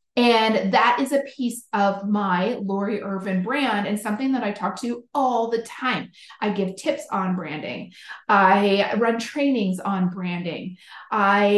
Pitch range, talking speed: 200-250 Hz, 155 wpm